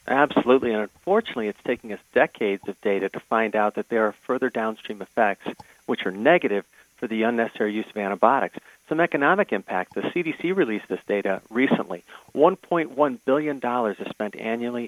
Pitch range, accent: 110-150 Hz, American